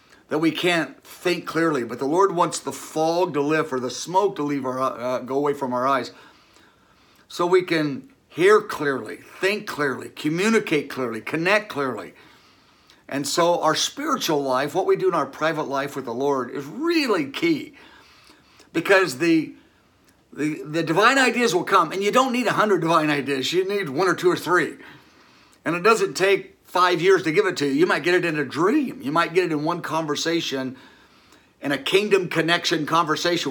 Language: English